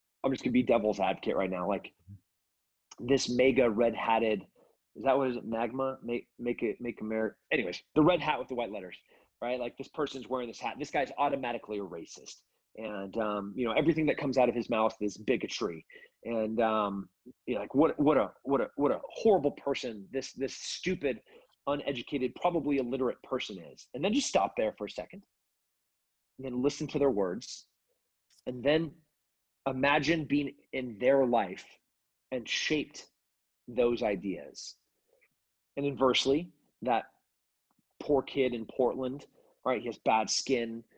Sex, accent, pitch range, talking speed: male, American, 110-135 Hz, 170 wpm